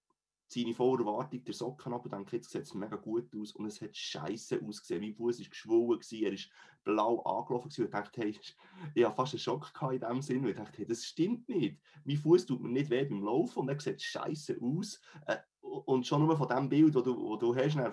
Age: 30-49